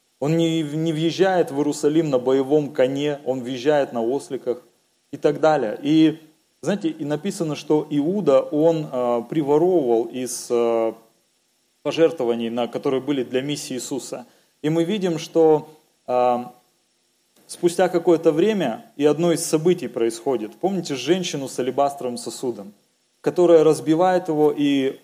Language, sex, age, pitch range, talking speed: Russian, male, 30-49, 135-165 Hz, 130 wpm